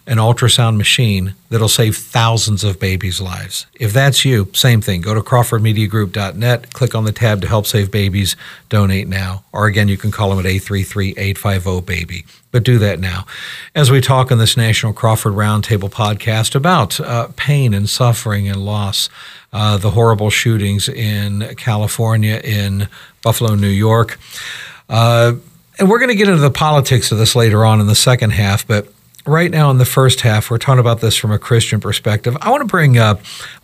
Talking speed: 185 wpm